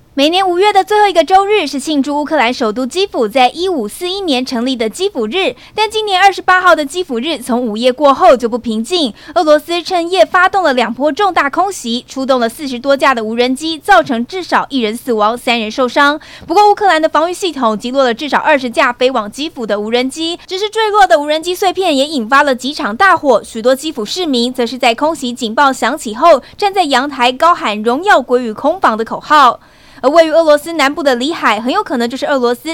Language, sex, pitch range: Chinese, female, 240-330 Hz